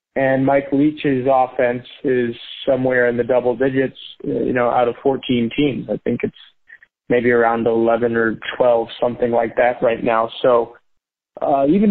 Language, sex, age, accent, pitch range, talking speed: English, male, 30-49, American, 120-140 Hz, 160 wpm